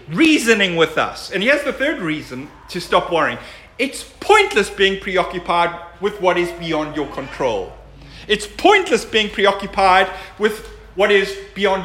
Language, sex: English, male